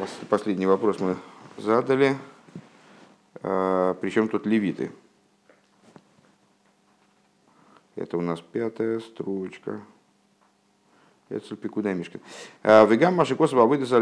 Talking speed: 80 wpm